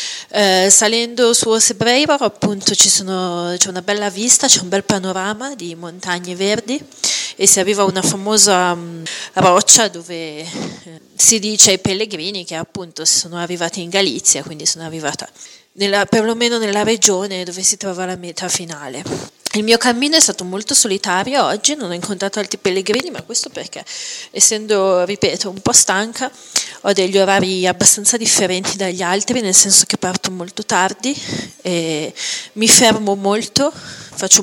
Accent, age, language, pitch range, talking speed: native, 30-49, Italian, 180-215 Hz, 155 wpm